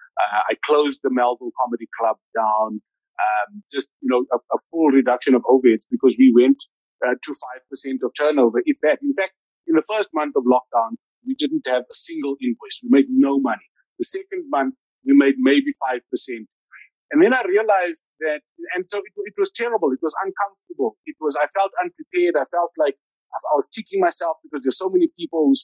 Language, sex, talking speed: English, male, 205 wpm